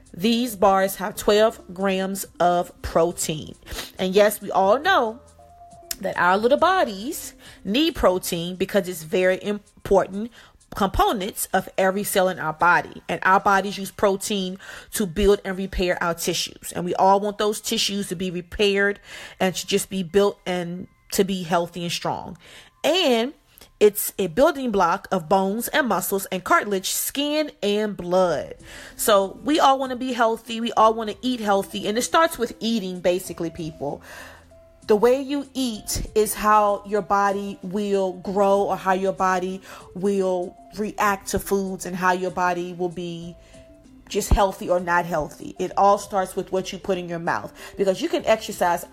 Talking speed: 170 wpm